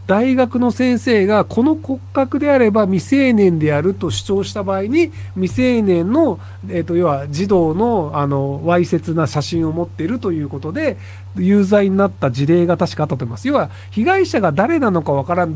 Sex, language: male, Japanese